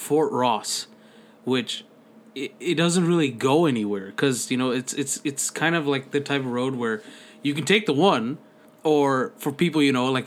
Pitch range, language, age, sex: 125-155 Hz, English, 20-39, male